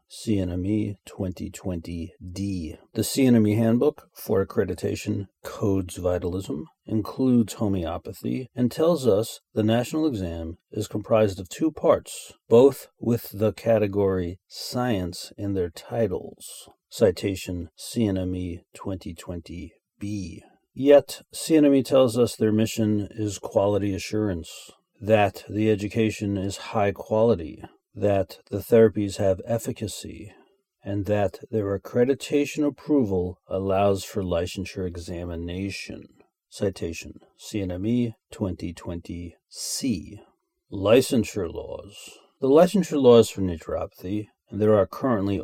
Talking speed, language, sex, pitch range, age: 105 wpm, English, male, 95-115 Hz, 40-59